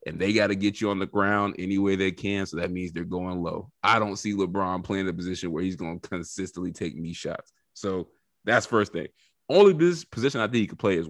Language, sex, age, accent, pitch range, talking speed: English, male, 30-49, American, 95-125 Hz, 250 wpm